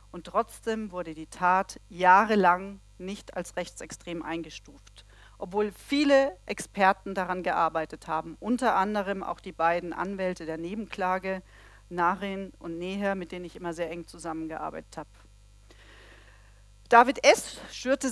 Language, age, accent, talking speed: German, 40-59, German, 125 wpm